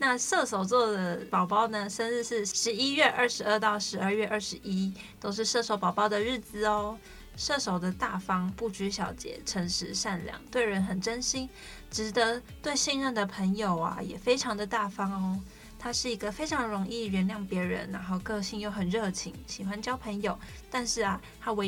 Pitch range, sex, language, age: 195-230 Hz, female, Chinese, 20-39